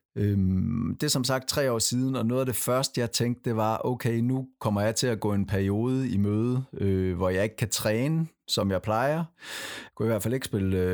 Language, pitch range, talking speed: Danish, 95-115 Hz, 235 wpm